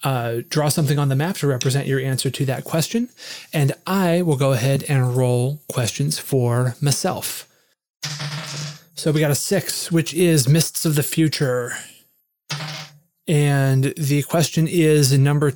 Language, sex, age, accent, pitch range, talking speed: English, male, 30-49, American, 135-155 Hz, 150 wpm